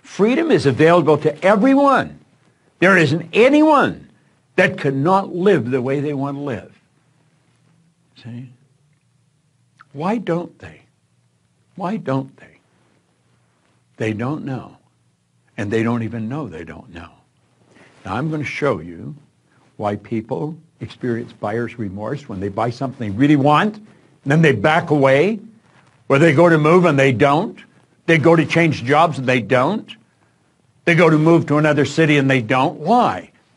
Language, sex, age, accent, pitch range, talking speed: English, male, 60-79, American, 130-170 Hz, 150 wpm